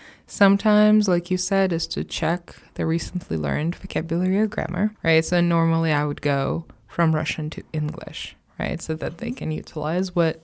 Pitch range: 155-180 Hz